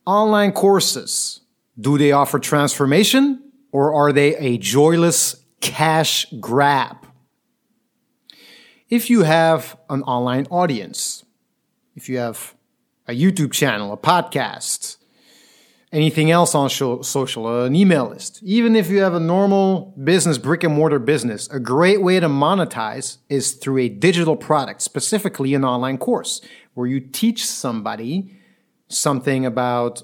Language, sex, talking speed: English, male, 130 wpm